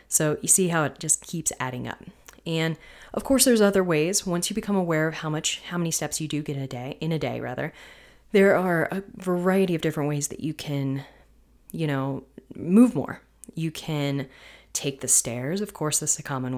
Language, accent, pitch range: English, American, 140-180 Hz